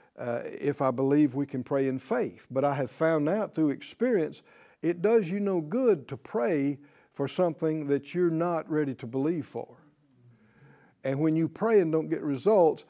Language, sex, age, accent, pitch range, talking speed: English, male, 60-79, American, 145-200 Hz, 185 wpm